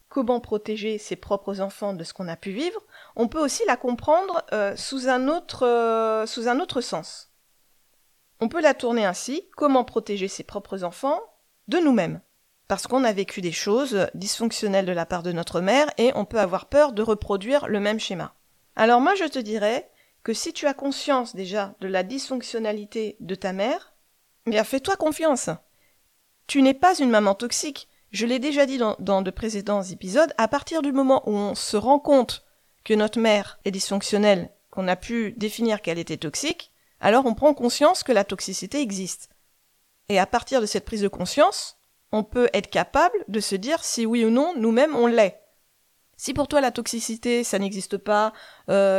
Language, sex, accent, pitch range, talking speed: French, female, French, 200-270 Hz, 185 wpm